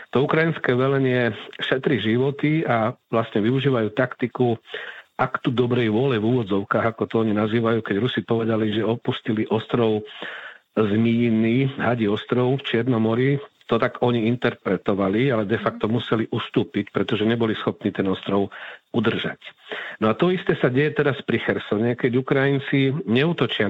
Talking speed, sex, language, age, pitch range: 145 wpm, male, Slovak, 50-69, 110-125 Hz